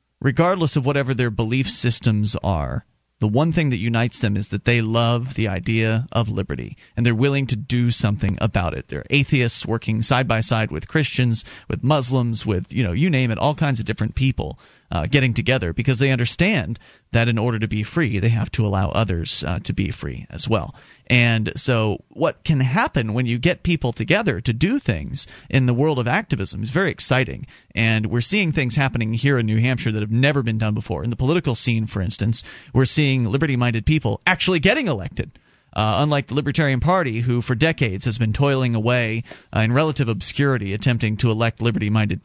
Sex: male